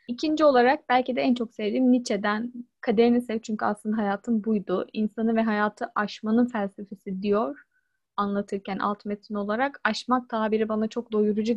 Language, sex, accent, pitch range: Turkish, female, native, 210-250 Hz